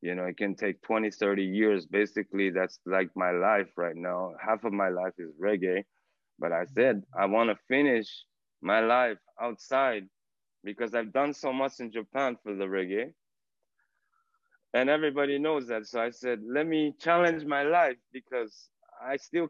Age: 20-39